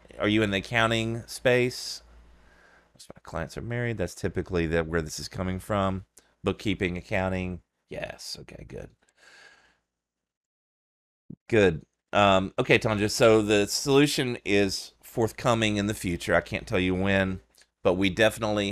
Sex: male